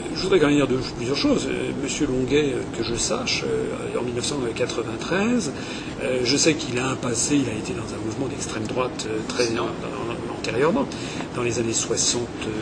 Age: 40-59